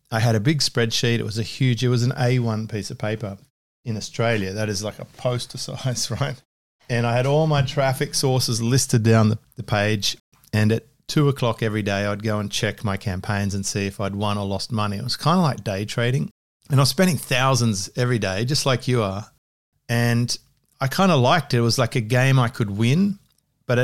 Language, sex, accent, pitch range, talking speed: English, male, Australian, 105-130 Hz, 225 wpm